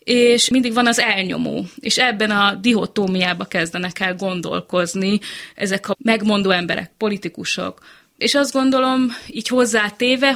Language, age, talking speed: Hungarian, 20-39, 125 wpm